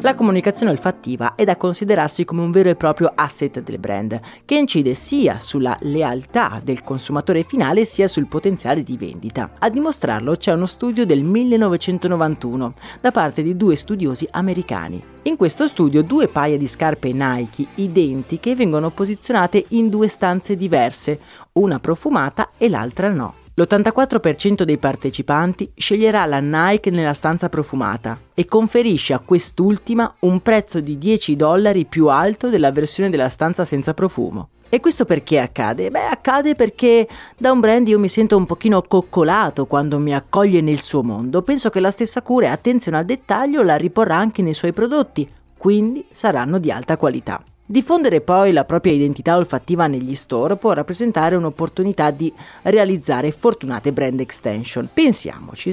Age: 30-49